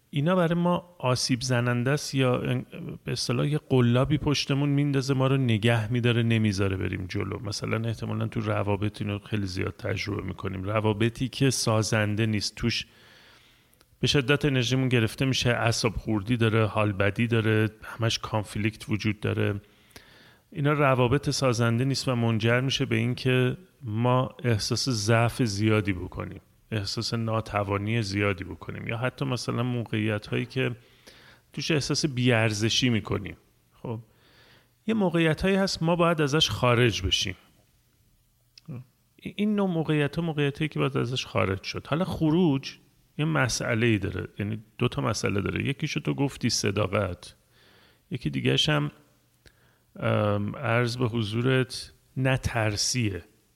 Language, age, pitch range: Persian, 30-49, 110-130 Hz